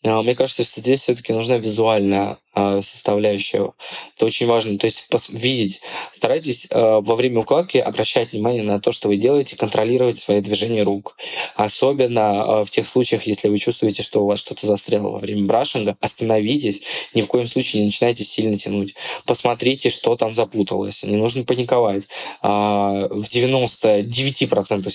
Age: 20-39